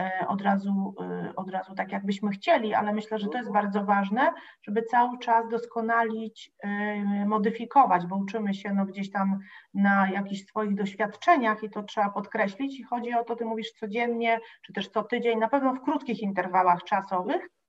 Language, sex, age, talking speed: Polish, female, 30-49, 170 wpm